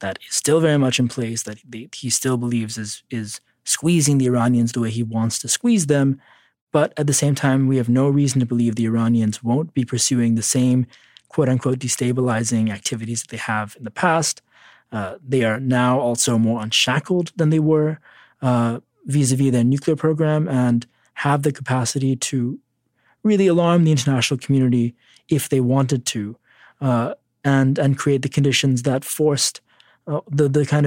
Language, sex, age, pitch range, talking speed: English, male, 20-39, 120-150 Hz, 175 wpm